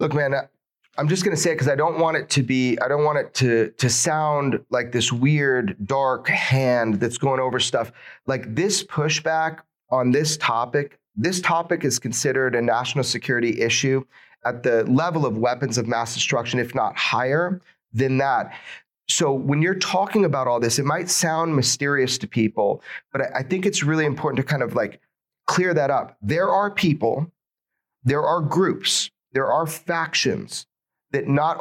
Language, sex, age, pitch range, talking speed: English, male, 30-49, 125-165 Hz, 180 wpm